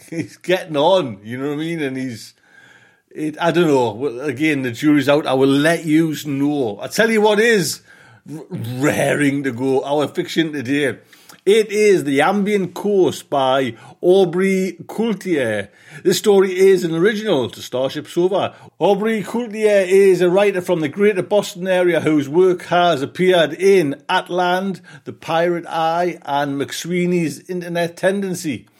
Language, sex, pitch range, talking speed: English, male, 145-185 Hz, 155 wpm